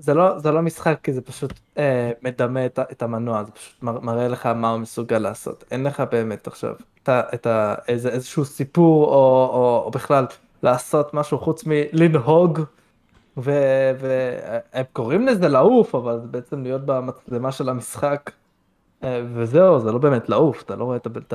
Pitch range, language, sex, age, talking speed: 115-145 Hz, Hebrew, male, 20-39, 165 wpm